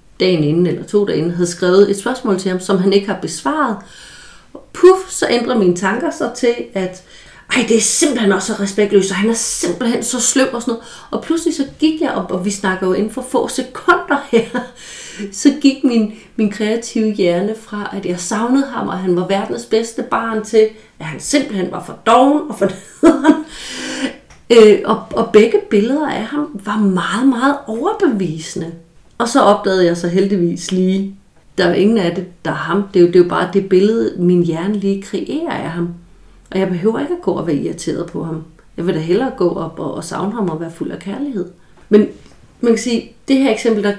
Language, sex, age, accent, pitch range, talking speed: Danish, female, 30-49, native, 180-230 Hz, 215 wpm